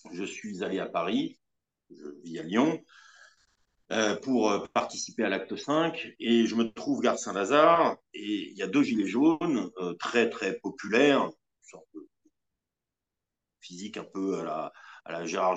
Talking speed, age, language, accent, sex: 165 wpm, 50-69, French, French, male